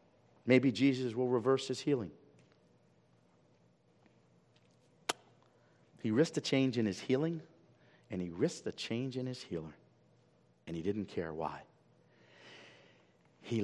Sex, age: male, 50-69